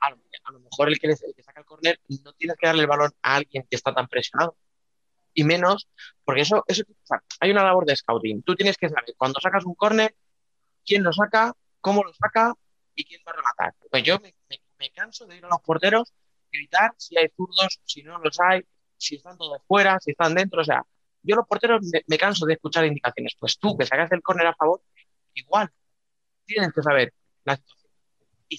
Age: 30-49